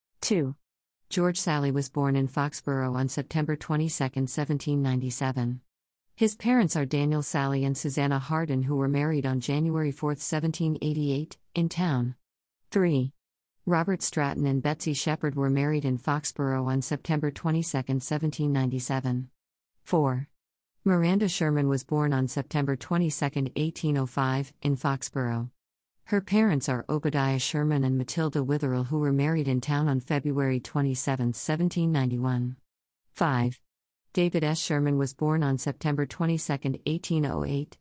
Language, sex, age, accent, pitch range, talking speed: English, female, 50-69, American, 135-155 Hz, 125 wpm